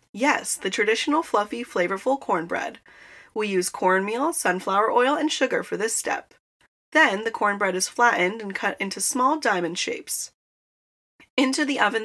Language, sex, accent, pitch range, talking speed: English, female, American, 200-295 Hz, 150 wpm